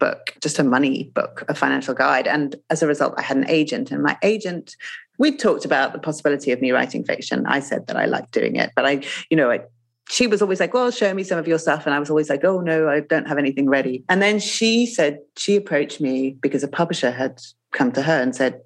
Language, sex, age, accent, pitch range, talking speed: English, female, 30-49, British, 145-205 Hz, 255 wpm